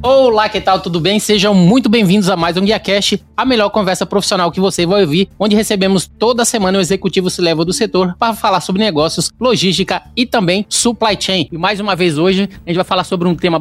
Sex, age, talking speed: male, 20-39, 230 wpm